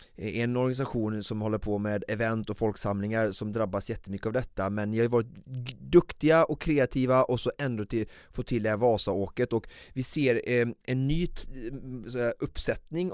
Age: 30-49